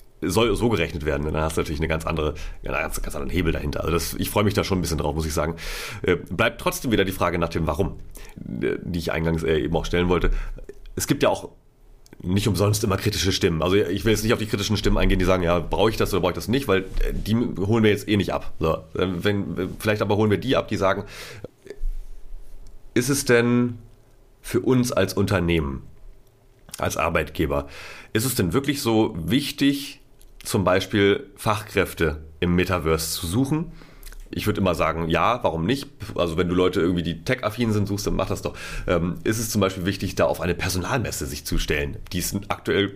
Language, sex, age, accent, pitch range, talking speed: German, male, 30-49, German, 85-105 Hz, 210 wpm